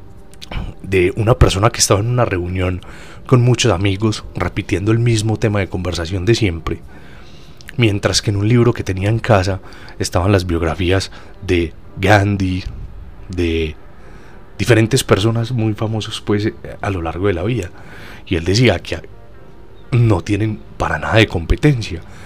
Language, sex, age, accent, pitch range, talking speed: Spanish, male, 30-49, Colombian, 85-110 Hz, 150 wpm